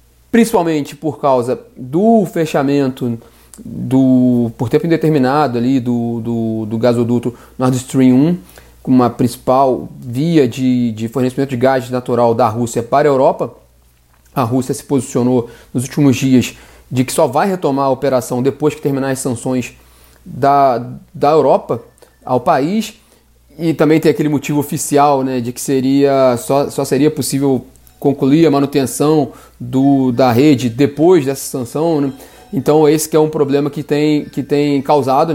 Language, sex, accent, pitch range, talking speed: Portuguese, male, Brazilian, 125-150 Hz, 155 wpm